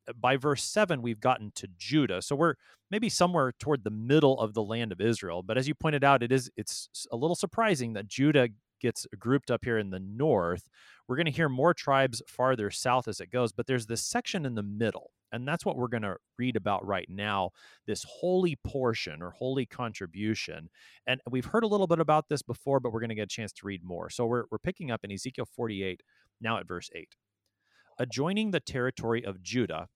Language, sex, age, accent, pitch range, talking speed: English, male, 30-49, American, 105-140 Hz, 220 wpm